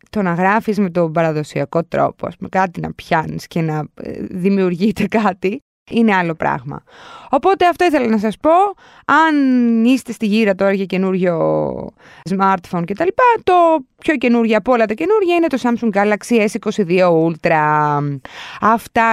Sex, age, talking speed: female, 20-39, 160 wpm